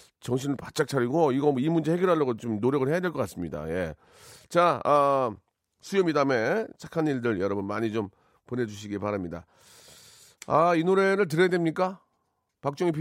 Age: 40-59